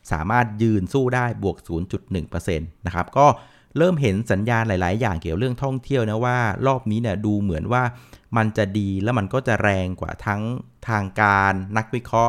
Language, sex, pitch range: Thai, male, 95-120 Hz